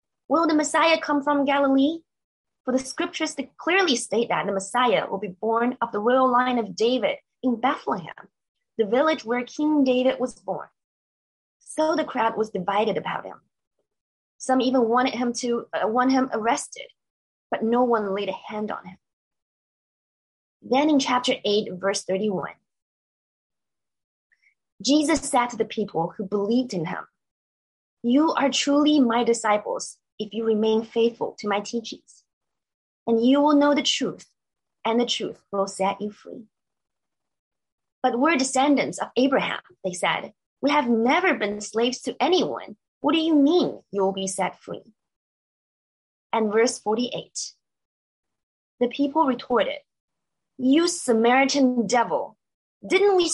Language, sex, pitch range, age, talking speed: English, female, 215-280 Hz, 20-39, 145 wpm